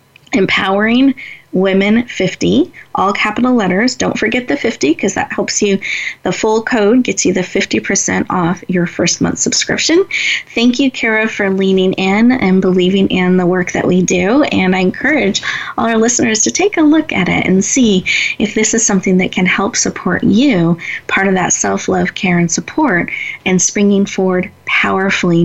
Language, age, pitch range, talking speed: English, 30-49, 185-255 Hz, 175 wpm